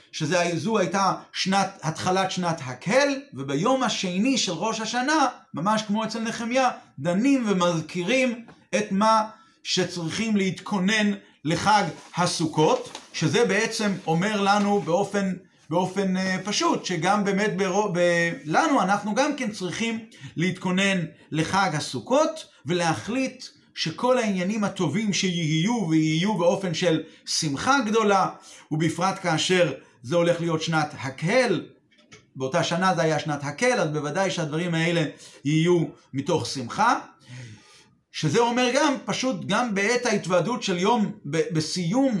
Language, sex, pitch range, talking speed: Hebrew, male, 170-225 Hz, 120 wpm